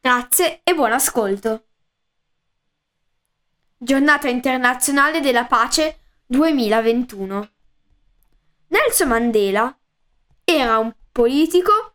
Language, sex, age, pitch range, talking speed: Italian, female, 10-29, 230-320 Hz, 70 wpm